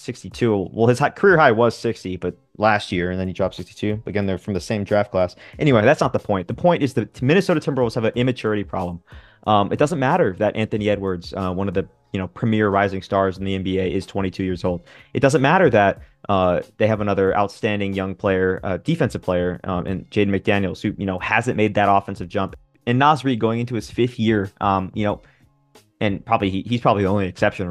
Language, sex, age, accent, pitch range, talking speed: English, male, 20-39, American, 95-115 Hz, 225 wpm